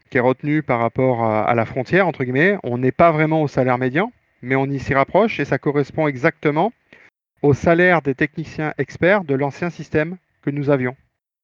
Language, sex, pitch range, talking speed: French, male, 125-155 Hz, 195 wpm